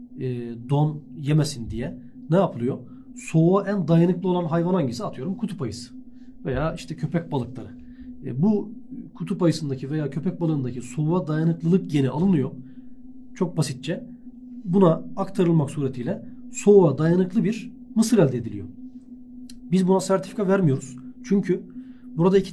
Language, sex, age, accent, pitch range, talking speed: Turkish, male, 40-59, native, 140-200 Hz, 125 wpm